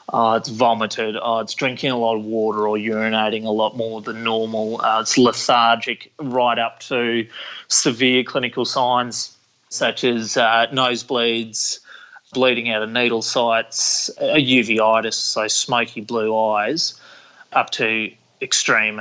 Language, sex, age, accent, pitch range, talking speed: English, male, 20-39, Australian, 110-125 Hz, 135 wpm